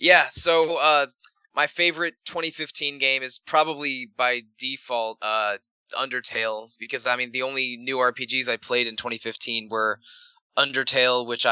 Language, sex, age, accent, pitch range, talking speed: English, male, 20-39, American, 115-135 Hz, 140 wpm